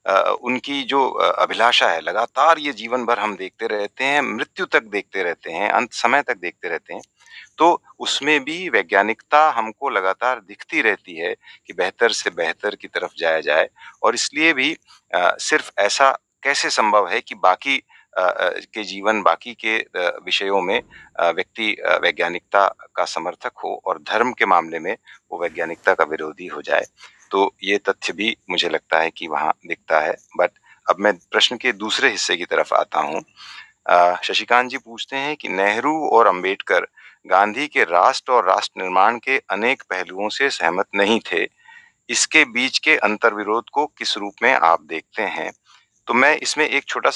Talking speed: 170 wpm